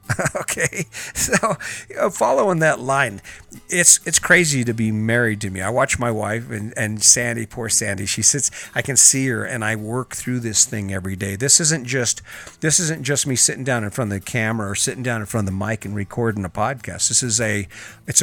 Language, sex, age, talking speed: English, male, 50-69, 225 wpm